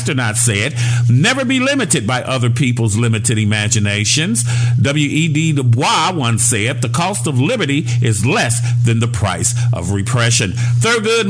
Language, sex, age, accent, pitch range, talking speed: English, male, 50-69, American, 115-140 Hz, 140 wpm